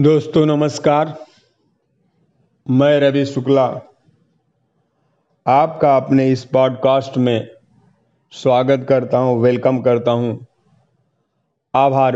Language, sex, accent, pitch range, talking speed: Hindi, male, native, 125-155 Hz, 85 wpm